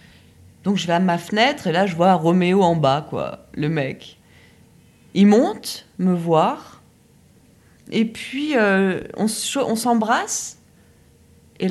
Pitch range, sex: 165-230 Hz, female